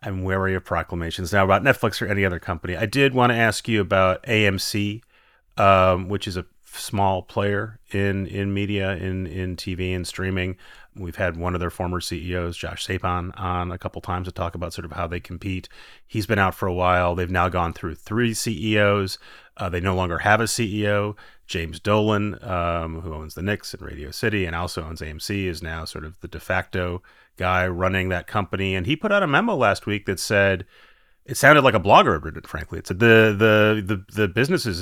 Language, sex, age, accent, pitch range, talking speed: English, male, 30-49, American, 90-105 Hz, 215 wpm